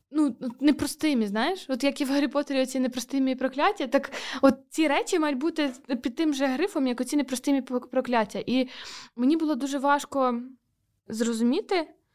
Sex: female